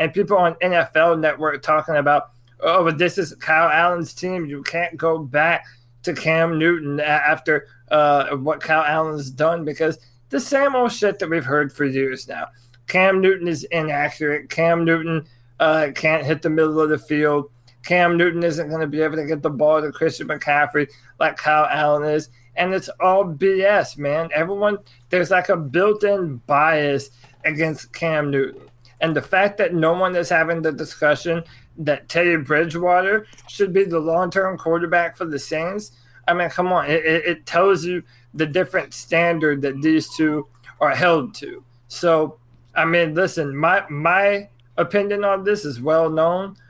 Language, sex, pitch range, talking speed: English, male, 145-175 Hz, 170 wpm